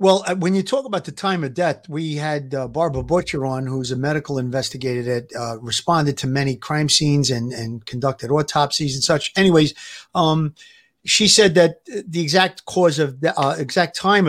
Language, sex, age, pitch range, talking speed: English, male, 50-69, 145-180 Hz, 195 wpm